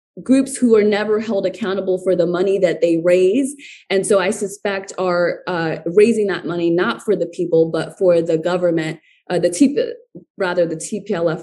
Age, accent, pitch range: 20-39, American, 170-225 Hz